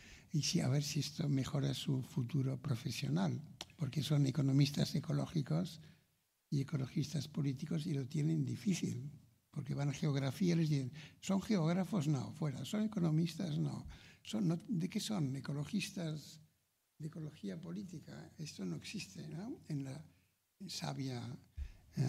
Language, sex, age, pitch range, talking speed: Spanish, male, 60-79, 140-165 Hz, 130 wpm